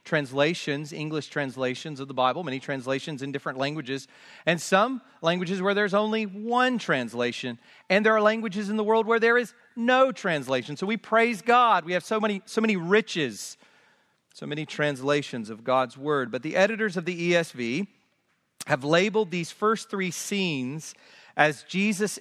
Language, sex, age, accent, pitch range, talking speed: English, male, 40-59, American, 145-205 Hz, 170 wpm